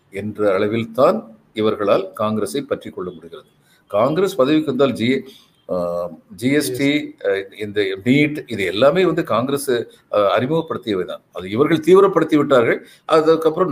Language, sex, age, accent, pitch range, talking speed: Tamil, male, 50-69, native, 110-160 Hz, 100 wpm